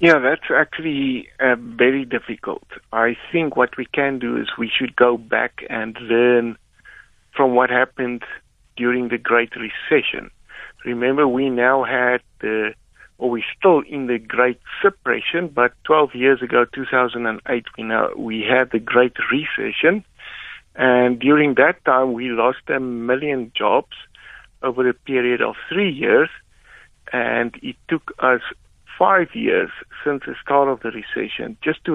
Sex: male